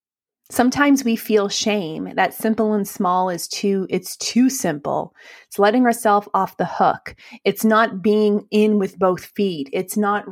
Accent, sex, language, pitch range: American, female, English, 190-240 Hz